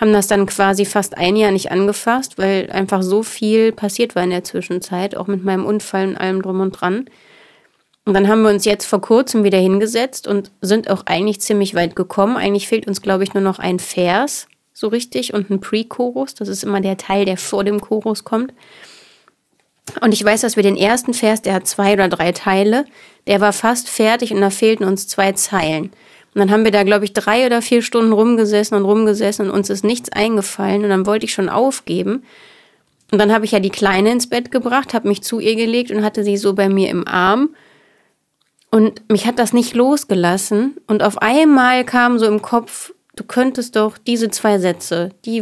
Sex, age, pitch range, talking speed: female, 30-49, 195-230 Hz, 210 wpm